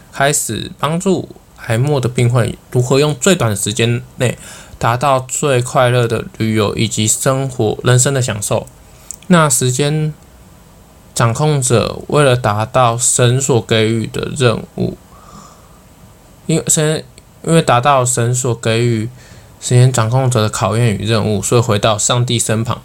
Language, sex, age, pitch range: Chinese, male, 20-39, 110-135 Hz